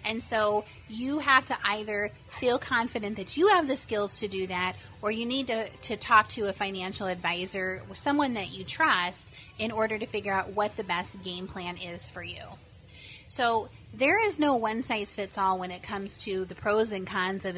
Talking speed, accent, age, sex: 195 wpm, American, 30-49, female